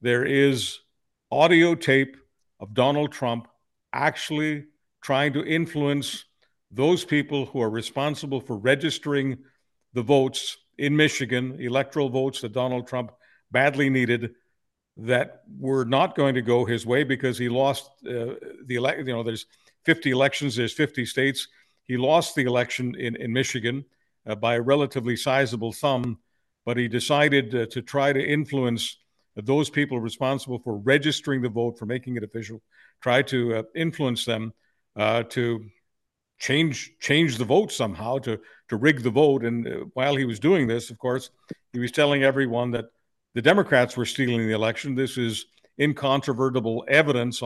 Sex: male